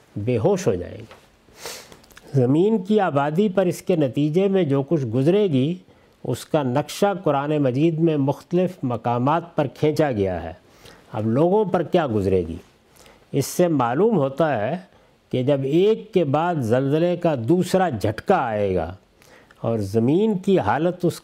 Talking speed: 155 wpm